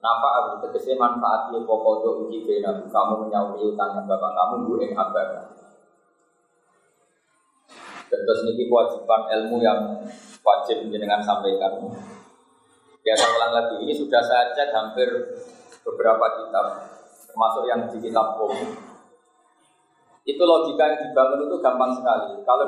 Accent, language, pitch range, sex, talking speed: native, Indonesian, 120-195 Hz, male, 120 wpm